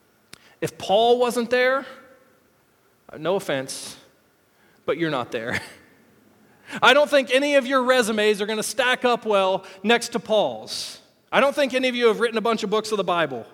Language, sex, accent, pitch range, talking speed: English, male, American, 215-285 Hz, 180 wpm